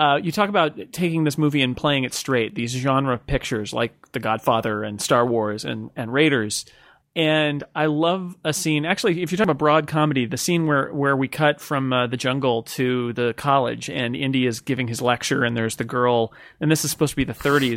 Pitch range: 125-155 Hz